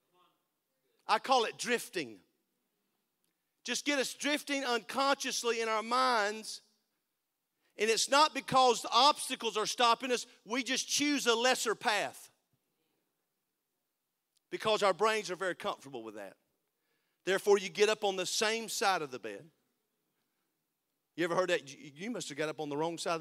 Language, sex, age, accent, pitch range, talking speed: English, male, 40-59, American, 165-230 Hz, 155 wpm